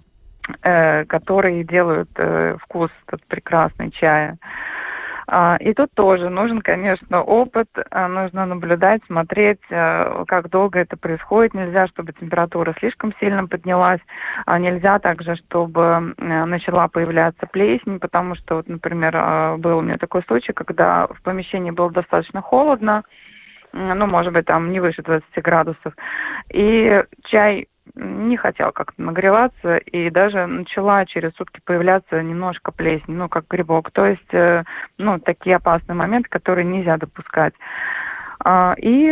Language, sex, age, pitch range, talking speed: Russian, female, 20-39, 170-200 Hz, 125 wpm